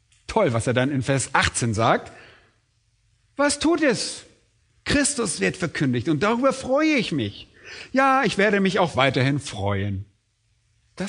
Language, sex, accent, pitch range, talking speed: German, male, German, 110-165 Hz, 145 wpm